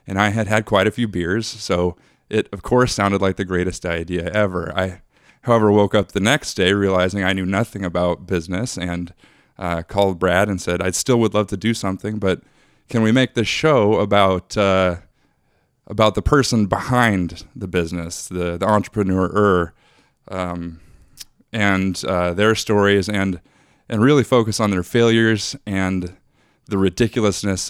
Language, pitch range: English, 90-115 Hz